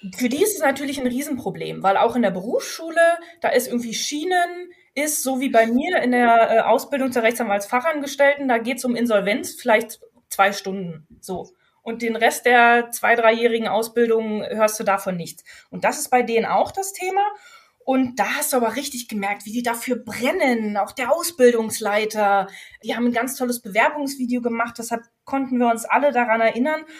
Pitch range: 220-275 Hz